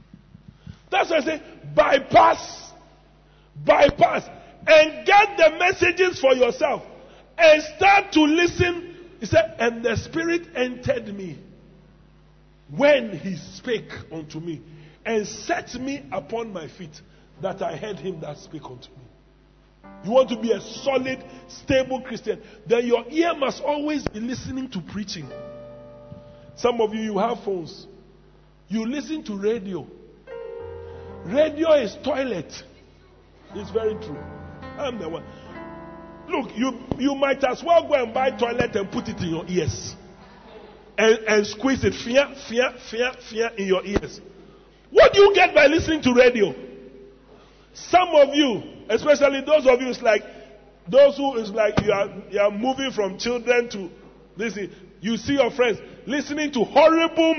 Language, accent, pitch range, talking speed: English, Nigerian, 195-290 Hz, 150 wpm